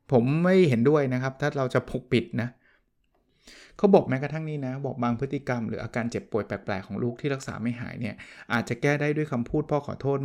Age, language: 20-39, Thai